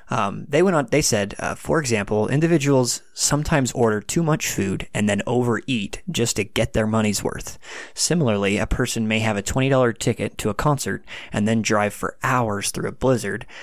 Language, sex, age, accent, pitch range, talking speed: English, male, 20-39, American, 105-120 Hz, 190 wpm